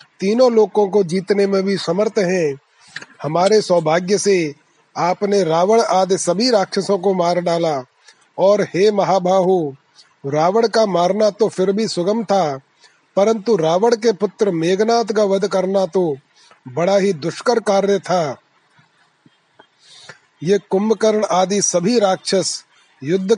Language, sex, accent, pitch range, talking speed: Hindi, male, native, 175-210 Hz, 130 wpm